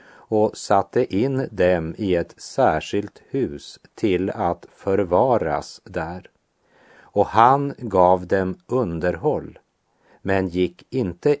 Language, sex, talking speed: English, male, 105 wpm